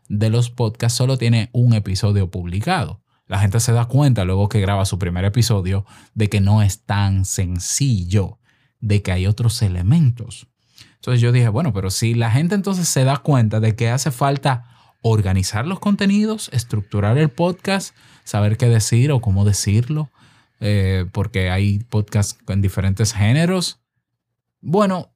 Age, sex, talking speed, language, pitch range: 20-39, male, 155 wpm, Spanish, 100-130 Hz